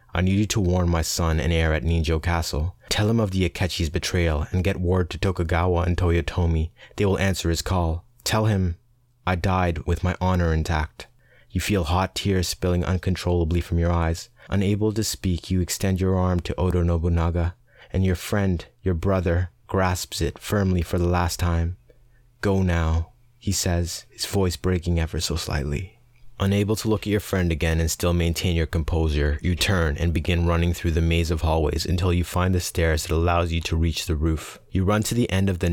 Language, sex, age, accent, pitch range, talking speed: English, male, 20-39, American, 85-95 Hz, 200 wpm